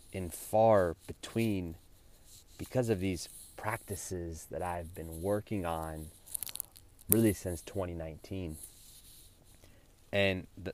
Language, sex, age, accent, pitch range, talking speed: English, male, 30-49, American, 85-100 Hz, 85 wpm